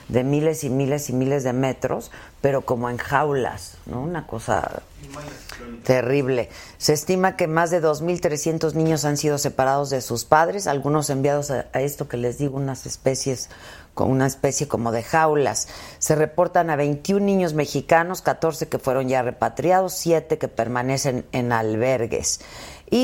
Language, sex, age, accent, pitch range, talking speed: Spanish, female, 40-59, Mexican, 130-165 Hz, 155 wpm